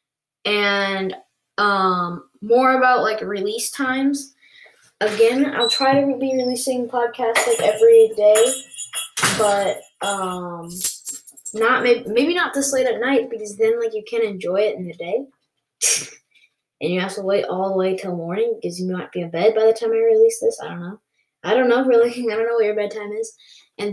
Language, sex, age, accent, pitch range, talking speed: English, female, 10-29, American, 195-255 Hz, 185 wpm